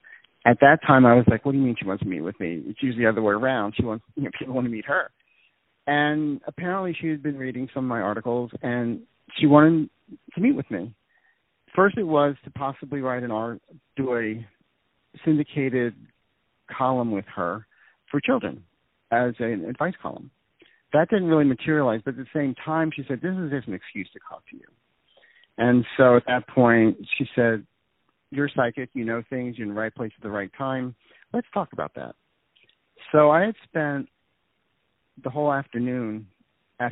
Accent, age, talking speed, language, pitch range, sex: American, 50-69, 195 wpm, English, 115-145 Hz, male